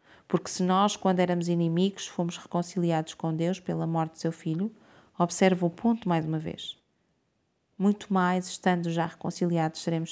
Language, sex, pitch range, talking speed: Portuguese, female, 165-185 Hz, 160 wpm